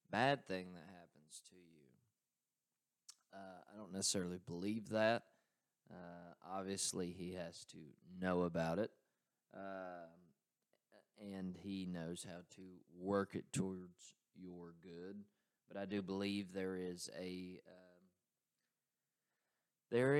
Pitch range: 90-105 Hz